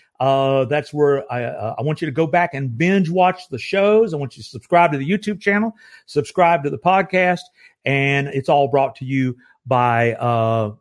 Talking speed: 205 wpm